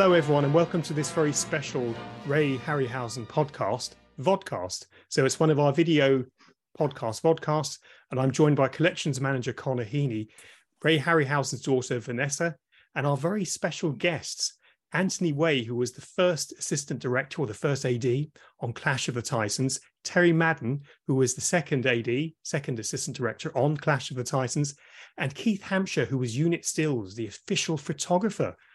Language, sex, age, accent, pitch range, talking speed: English, male, 30-49, British, 125-160 Hz, 165 wpm